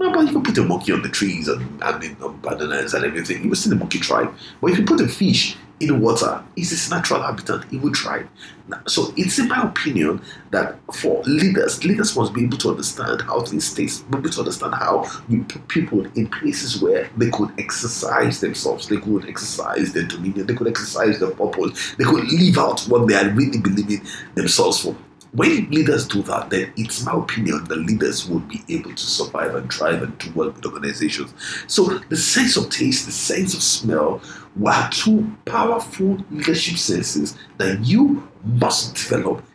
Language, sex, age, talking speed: English, male, 50-69, 195 wpm